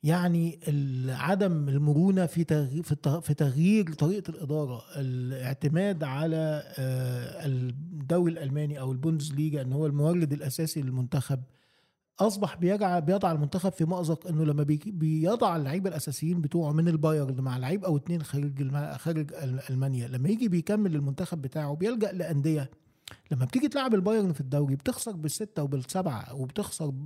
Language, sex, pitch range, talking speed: Arabic, male, 140-180 Hz, 130 wpm